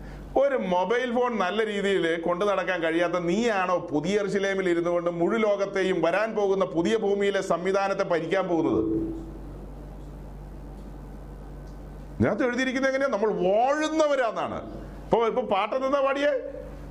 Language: Malayalam